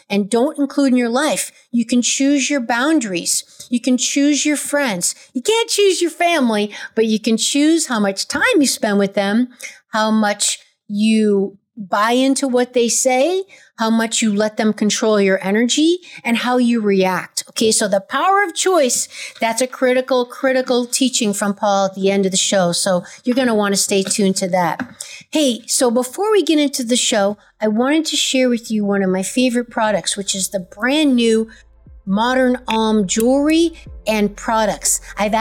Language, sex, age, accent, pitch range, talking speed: English, female, 50-69, American, 205-275 Hz, 190 wpm